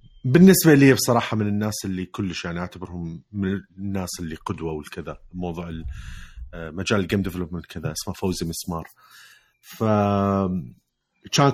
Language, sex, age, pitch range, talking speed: Arabic, male, 30-49, 95-125 Hz, 125 wpm